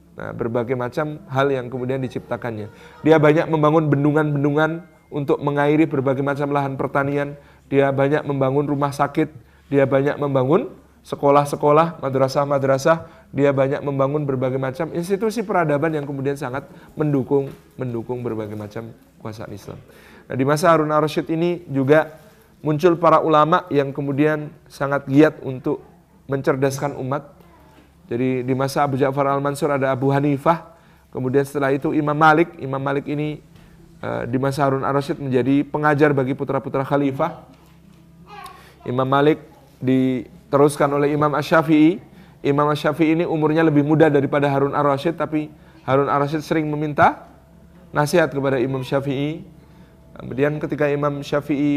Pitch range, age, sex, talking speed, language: 135-155 Hz, 30-49, male, 135 wpm, Indonesian